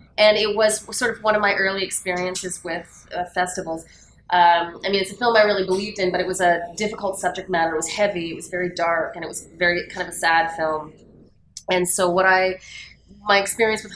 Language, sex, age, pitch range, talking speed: English, female, 30-49, 175-210 Hz, 230 wpm